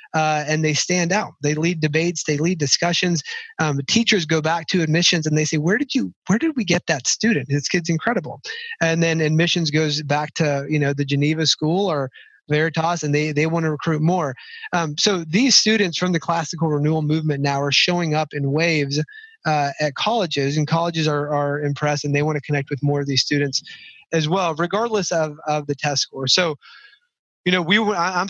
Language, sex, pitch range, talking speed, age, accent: English, male, 150-175 Hz, 210 wpm, 30-49, American